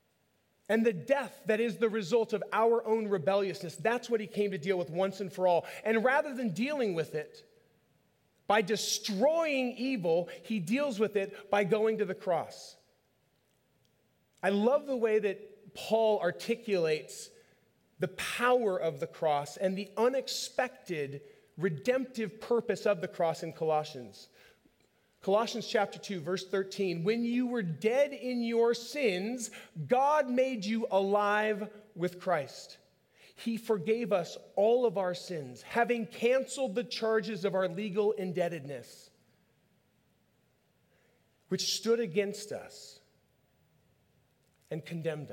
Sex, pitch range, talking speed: male, 185-235 Hz, 135 wpm